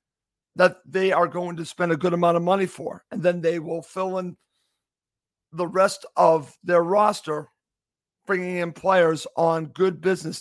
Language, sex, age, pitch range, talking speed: English, male, 50-69, 160-185 Hz, 165 wpm